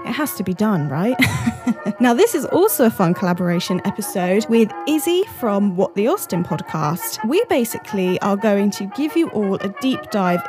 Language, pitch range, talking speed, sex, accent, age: English, 195-250 Hz, 185 wpm, female, British, 10-29